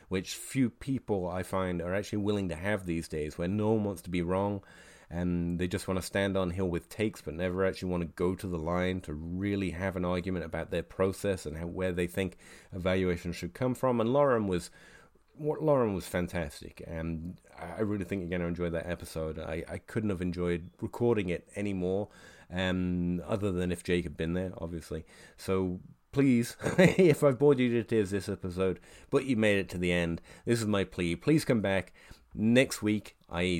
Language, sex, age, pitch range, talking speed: English, male, 30-49, 85-110 Hz, 205 wpm